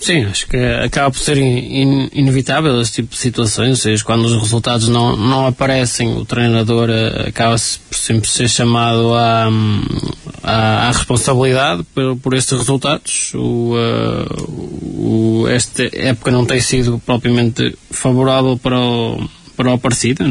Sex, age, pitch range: male, 20-39, 115-130 Hz